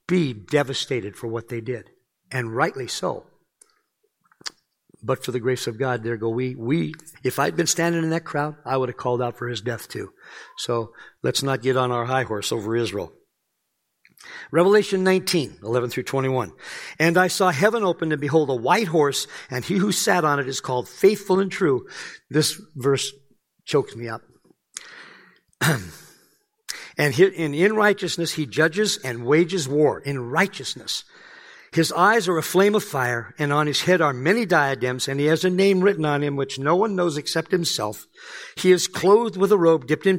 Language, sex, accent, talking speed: English, male, American, 180 wpm